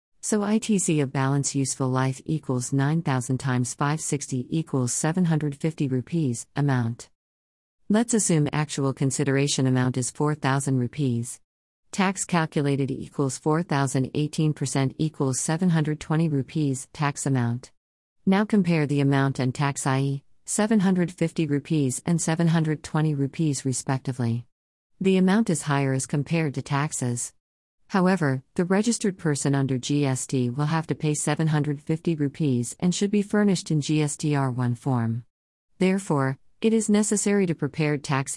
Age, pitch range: 50-69, 130-165 Hz